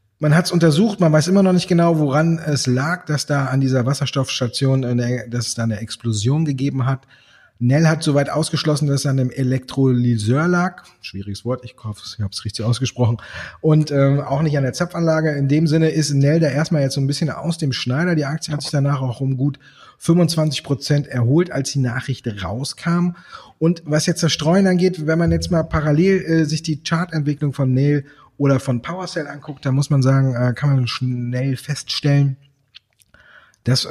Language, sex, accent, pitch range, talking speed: German, male, German, 125-155 Hz, 195 wpm